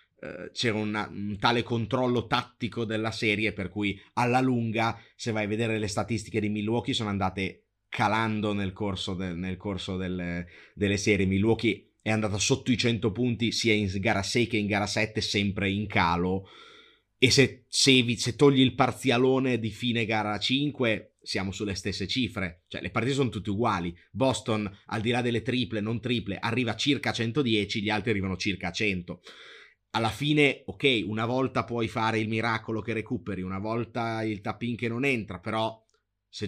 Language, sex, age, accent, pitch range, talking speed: Italian, male, 30-49, native, 100-120 Hz, 180 wpm